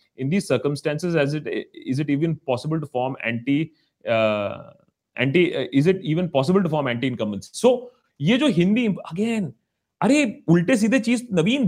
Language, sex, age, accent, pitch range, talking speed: Hindi, male, 30-49, native, 120-195 Hz, 170 wpm